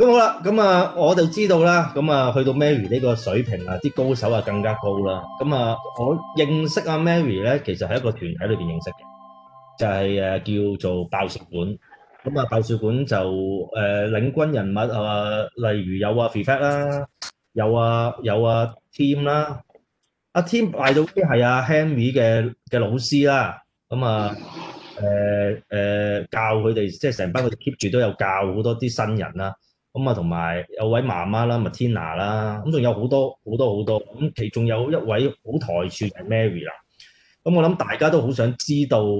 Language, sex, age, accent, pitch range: Chinese, male, 30-49, native, 105-145 Hz